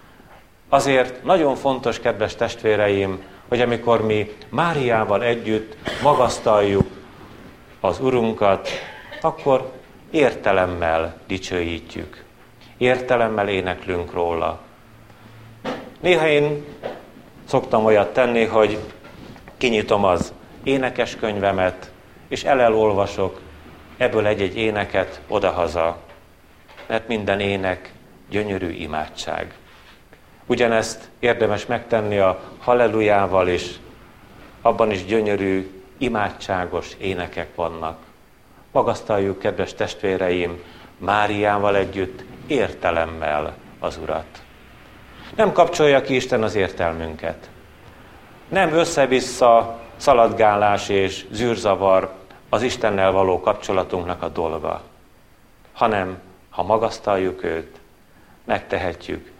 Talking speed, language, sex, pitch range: 85 wpm, Hungarian, male, 95-120 Hz